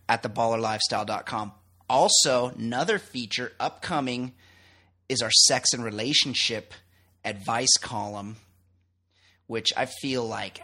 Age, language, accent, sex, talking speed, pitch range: 30-49, English, American, male, 100 wpm, 100-125 Hz